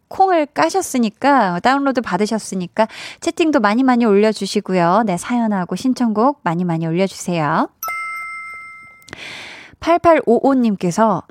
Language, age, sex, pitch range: Korean, 20-39, female, 200-285 Hz